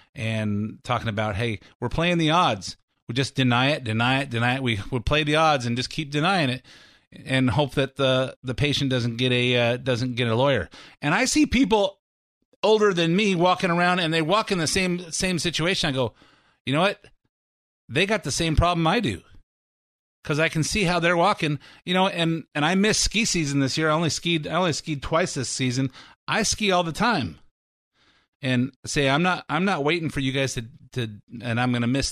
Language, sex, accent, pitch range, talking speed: English, male, American, 120-165 Hz, 215 wpm